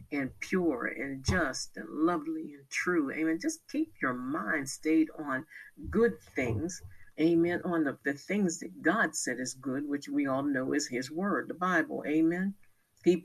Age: 50-69